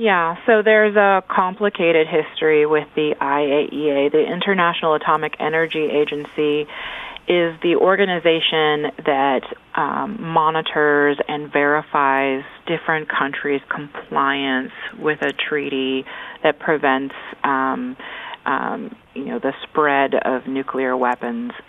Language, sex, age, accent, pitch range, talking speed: English, female, 30-49, American, 135-155 Hz, 110 wpm